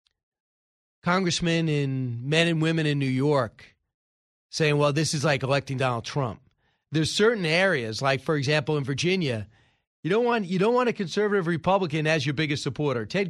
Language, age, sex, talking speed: English, 40-59, male, 170 wpm